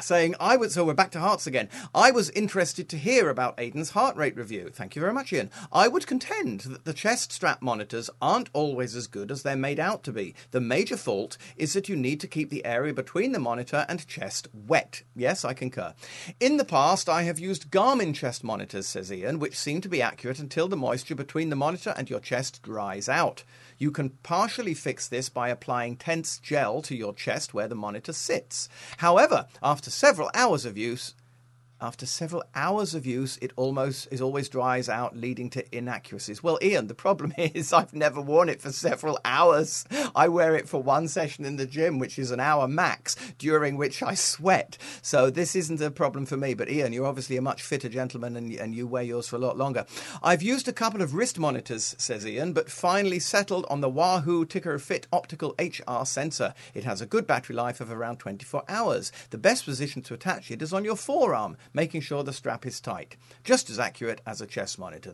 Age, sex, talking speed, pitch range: 40-59, male, 215 wpm, 125-170 Hz